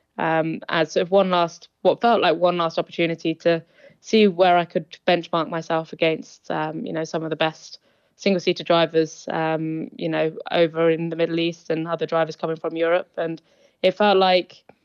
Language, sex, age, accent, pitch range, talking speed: English, female, 20-39, British, 165-180 Hz, 190 wpm